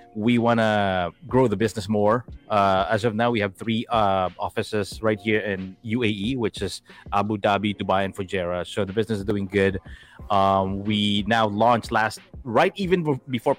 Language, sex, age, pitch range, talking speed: Filipino, male, 30-49, 100-125 Hz, 180 wpm